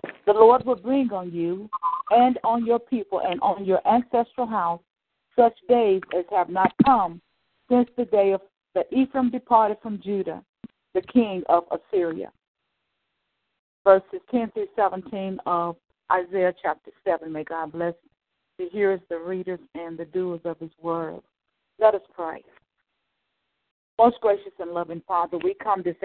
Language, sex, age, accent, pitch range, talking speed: English, female, 50-69, American, 175-215 Hz, 150 wpm